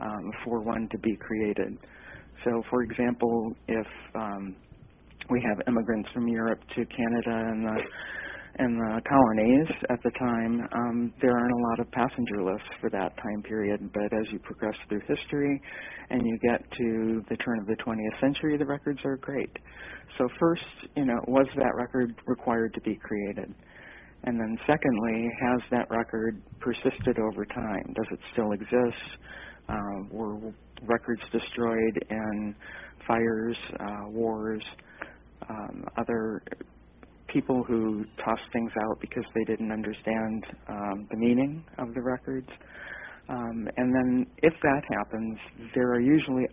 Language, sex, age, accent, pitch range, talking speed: English, male, 50-69, American, 110-125 Hz, 150 wpm